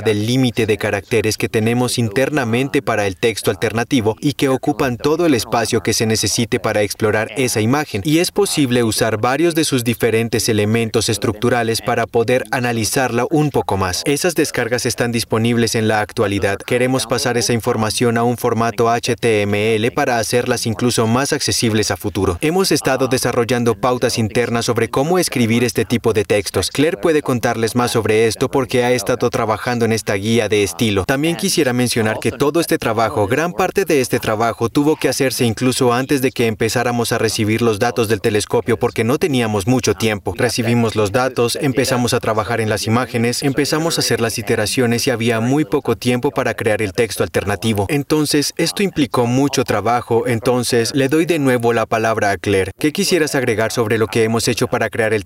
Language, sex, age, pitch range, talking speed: Spanish, male, 30-49, 115-130 Hz, 185 wpm